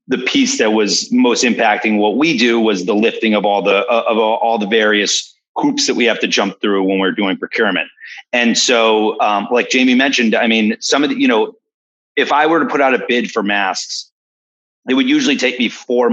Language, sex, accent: English, male, American